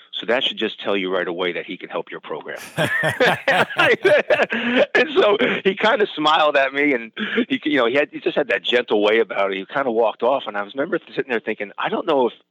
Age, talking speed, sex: 30-49, 250 wpm, male